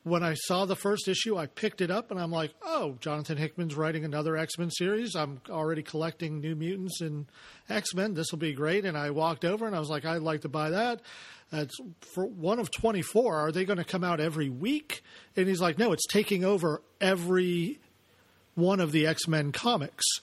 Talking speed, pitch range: 205 wpm, 160-205 Hz